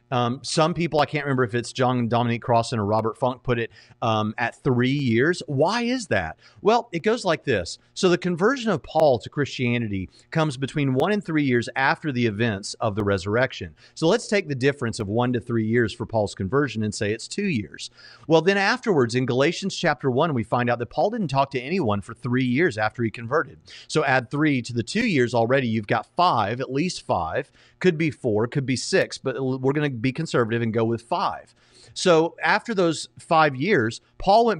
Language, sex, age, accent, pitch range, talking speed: English, male, 40-59, American, 120-155 Hz, 215 wpm